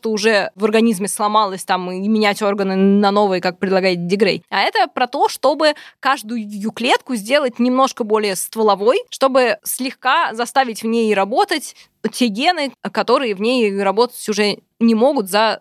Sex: female